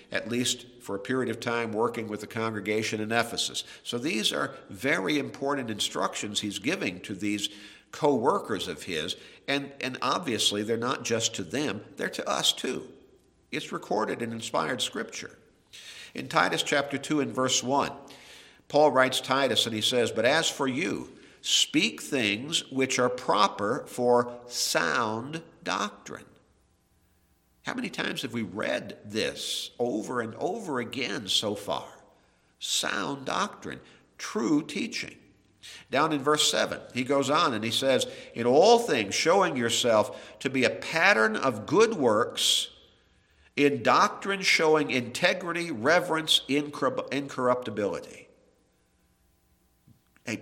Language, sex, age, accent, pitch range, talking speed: English, male, 50-69, American, 105-135 Hz, 135 wpm